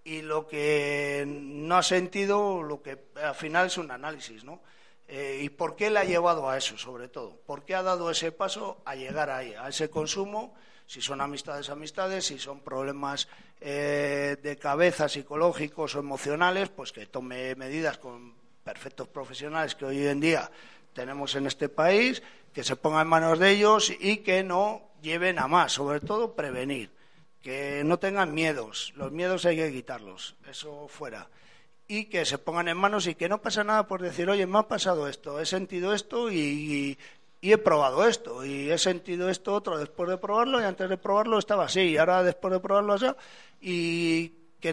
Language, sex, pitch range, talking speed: Spanish, male, 140-190 Hz, 190 wpm